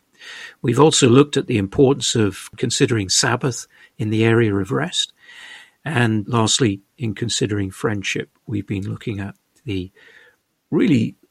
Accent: British